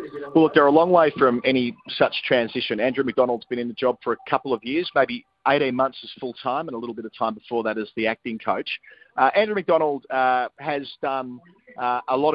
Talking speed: 230 wpm